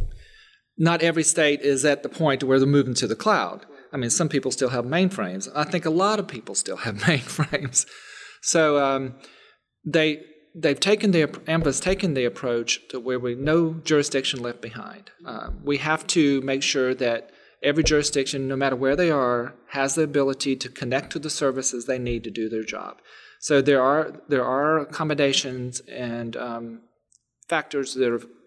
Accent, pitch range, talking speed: American, 125-155 Hz, 180 wpm